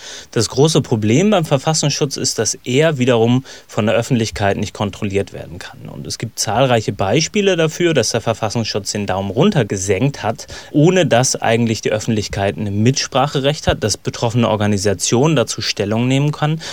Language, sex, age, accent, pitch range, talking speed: German, male, 30-49, German, 105-130 Hz, 160 wpm